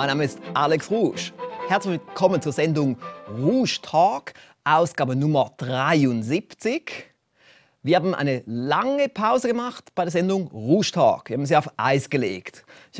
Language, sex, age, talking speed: German, male, 30-49, 150 wpm